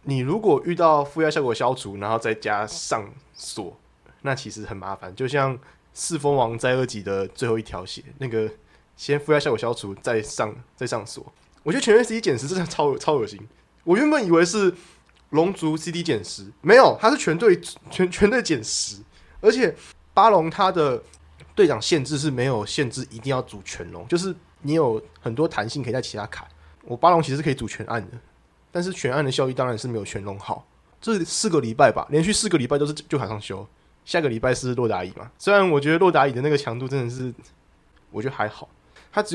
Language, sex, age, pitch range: Chinese, male, 20-39, 110-155 Hz